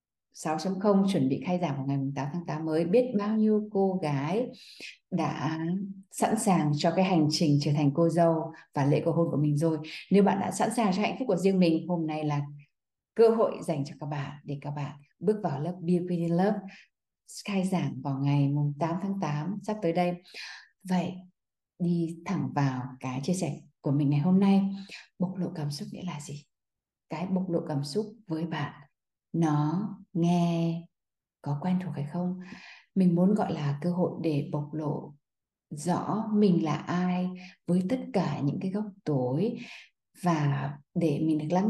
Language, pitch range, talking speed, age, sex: Vietnamese, 150-190 Hz, 185 wpm, 20-39, female